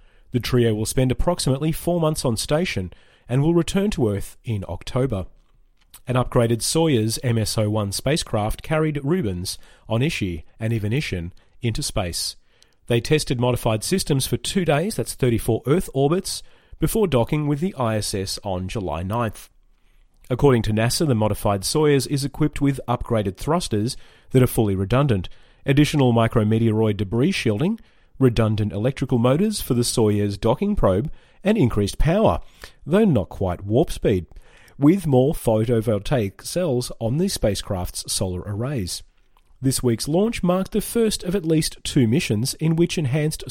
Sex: male